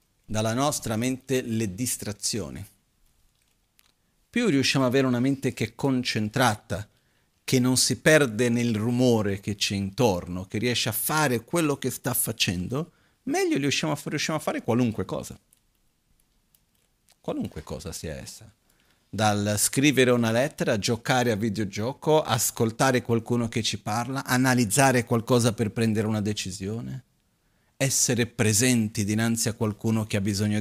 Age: 40-59